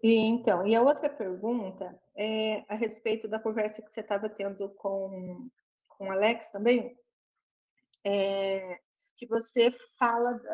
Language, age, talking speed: Portuguese, 40-59, 135 wpm